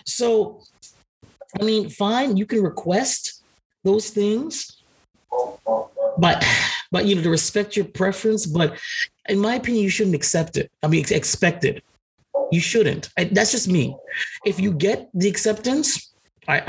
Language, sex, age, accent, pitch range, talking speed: English, male, 30-49, American, 150-205 Hz, 145 wpm